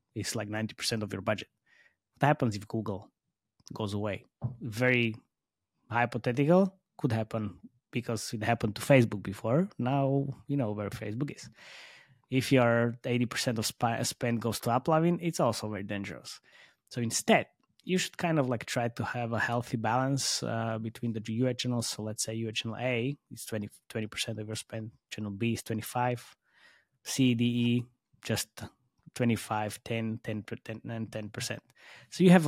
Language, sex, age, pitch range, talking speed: English, male, 20-39, 110-125 Hz, 160 wpm